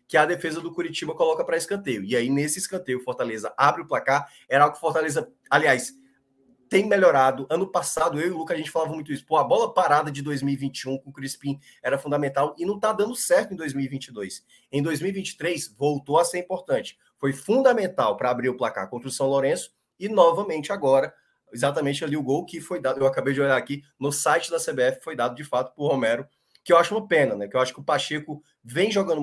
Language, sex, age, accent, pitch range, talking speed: Portuguese, male, 20-39, Brazilian, 140-190 Hz, 225 wpm